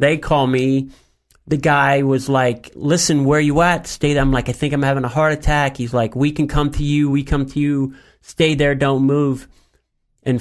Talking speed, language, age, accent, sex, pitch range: 220 wpm, English, 40-59, American, male, 120-145 Hz